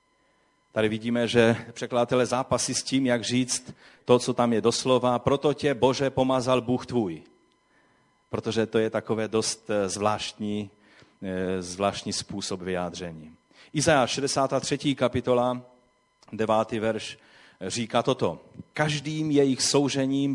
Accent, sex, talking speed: native, male, 115 wpm